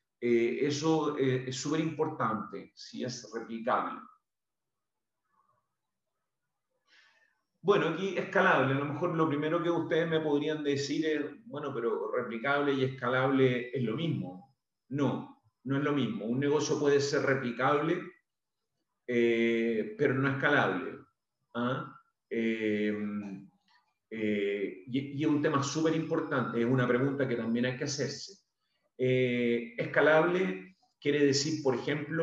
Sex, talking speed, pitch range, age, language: male, 130 wpm, 120-155 Hz, 40-59, English